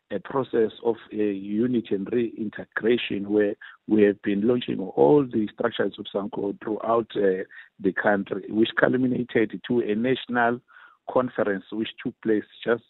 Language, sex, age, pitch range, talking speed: English, male, 50-69, 100-120 Hz, 150 wpm